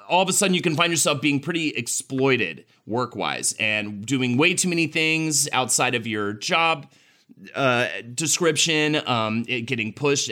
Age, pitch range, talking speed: 30-49, 115-150 Hz, 155 wpm